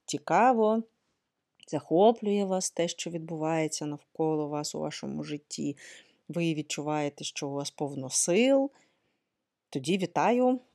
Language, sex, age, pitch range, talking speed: Ukrainian, female, 30-49, 155-200 Hz, 110 wpm